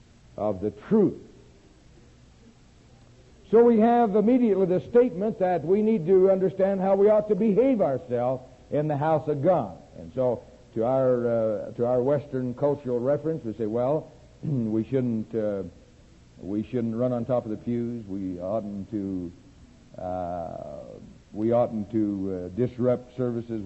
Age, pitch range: 60-79, 110-155 Hz